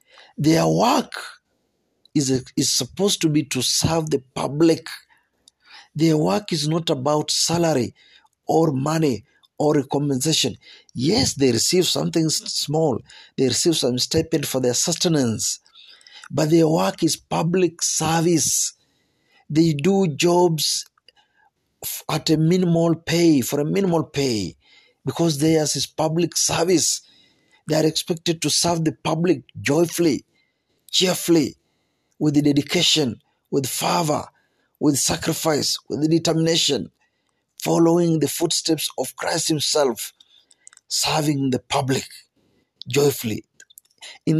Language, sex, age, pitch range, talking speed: Swahili, male, 50-69, 140-170 Hz, 115 wpm